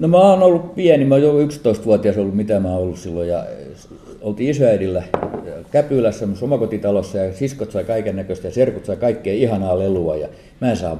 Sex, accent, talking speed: male, native, 190 wpm